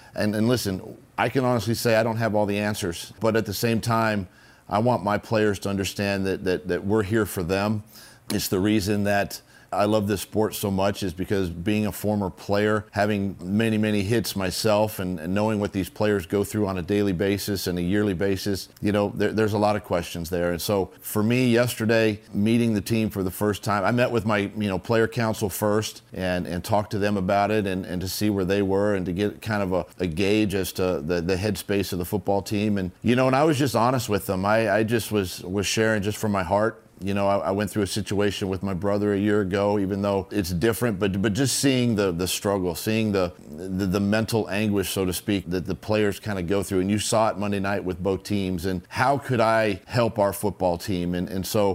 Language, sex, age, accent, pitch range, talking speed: English, male, 40-59, American, 95-110 Hz, 245 wpm